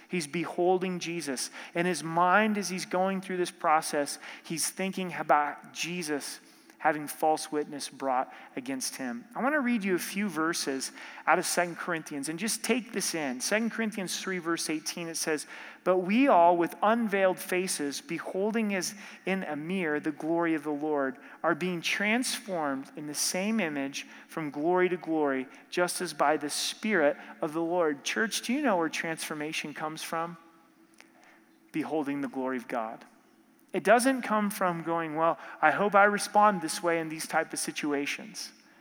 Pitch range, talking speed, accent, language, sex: 160-220 Hz, 170 wpm, American, English, male